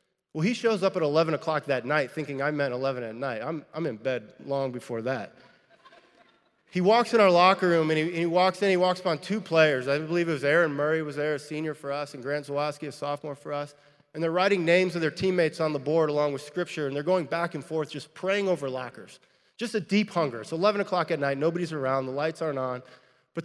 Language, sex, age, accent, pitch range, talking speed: English, male, 20-39, American, 140-175 Hz, 250 wpm